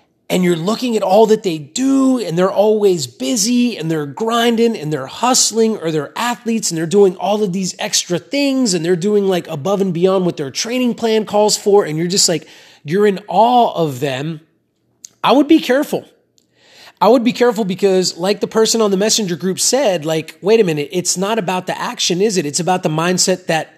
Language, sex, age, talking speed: English, male, 30-49, 210 wpm